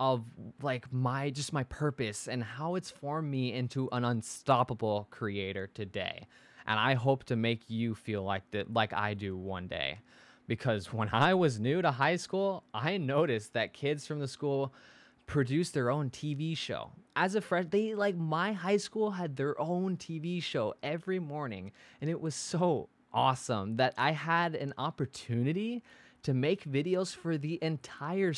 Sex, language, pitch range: male, English, 115-155 Hz